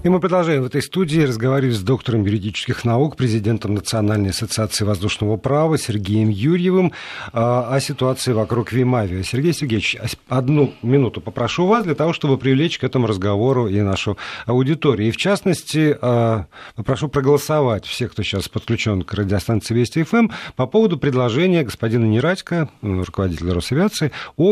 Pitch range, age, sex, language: 110-145 Hz, 40-59, male, Russian